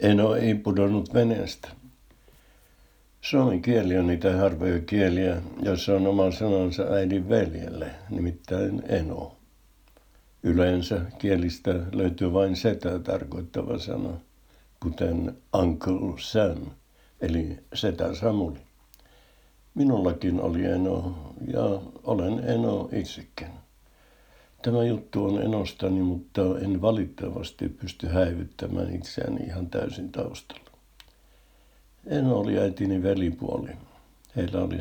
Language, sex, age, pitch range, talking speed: Finnish, male, 60-79, 90-100 Hz, 100 wpm